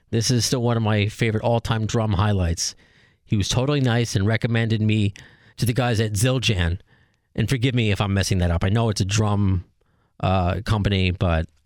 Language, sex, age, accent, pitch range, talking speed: English, male, 30-49, American, 95-120 Hz, 195 wpm